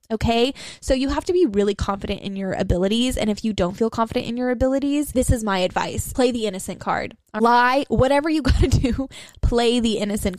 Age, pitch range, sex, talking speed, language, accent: 10-29, 205-280 Hz, female, 215 wpm, English, American